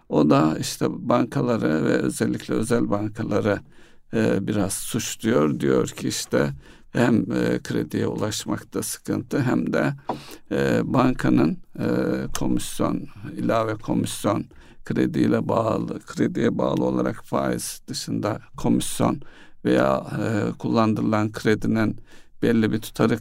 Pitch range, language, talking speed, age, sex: 70-110 Hz, Turkish, 110 wpm, 60-79, male